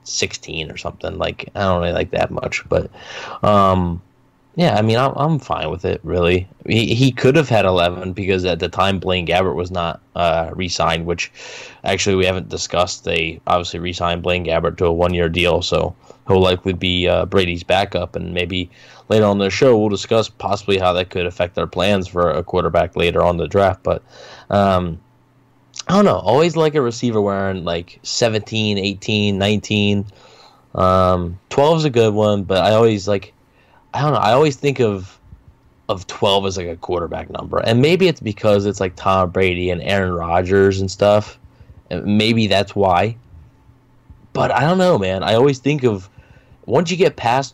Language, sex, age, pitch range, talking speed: English, male, 10-29, 90-115 Hz, 185 wpm